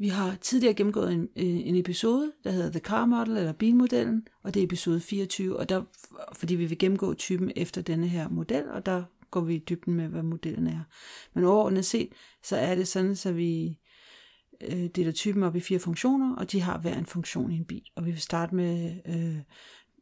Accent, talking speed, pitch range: native, 215 wpm, 170-200 Hz